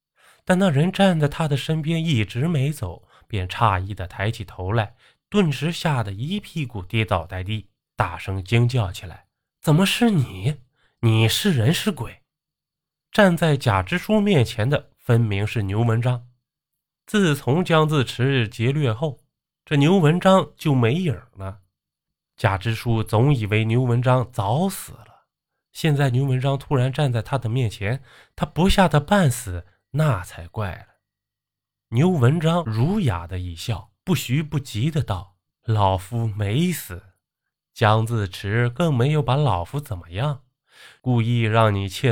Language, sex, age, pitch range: Chinese, male, 20-39, 105-150 Hz